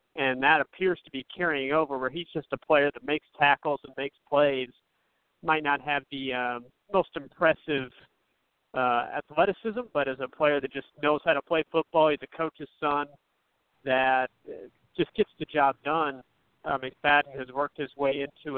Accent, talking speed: American, 180 wpm